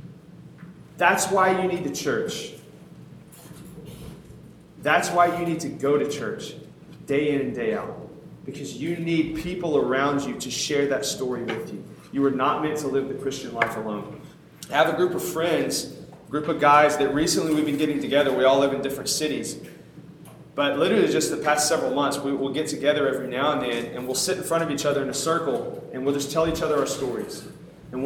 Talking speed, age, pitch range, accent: 210 wpm, 30-49, 135-155 Hz, American